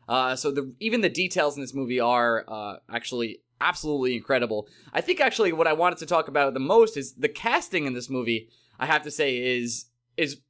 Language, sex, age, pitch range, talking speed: English, male, 20-39, 135-195 Hz, 210 wpm